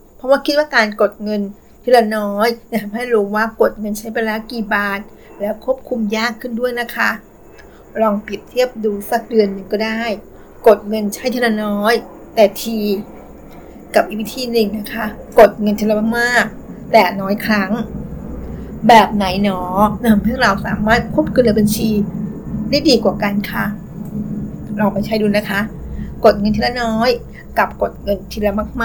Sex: female